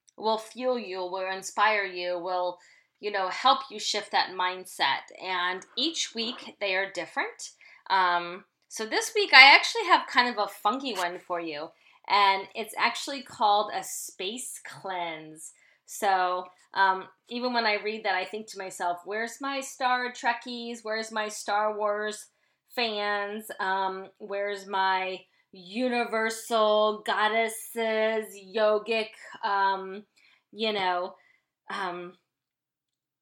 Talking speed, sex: 130 wpm, female